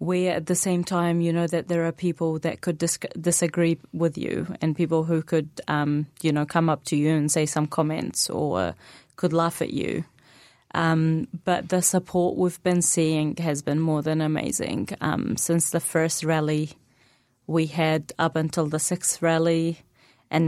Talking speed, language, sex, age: 180 wpm, Arabic, female, 30-49